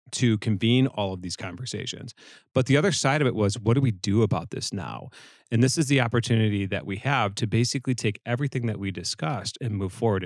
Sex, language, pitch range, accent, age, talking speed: male, English, 100-120 Hz, American, 30-49, 220 wpm